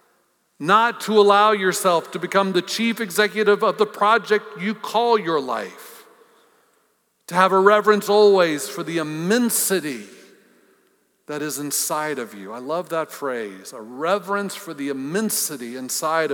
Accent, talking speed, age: American, 145 wpm, 50-69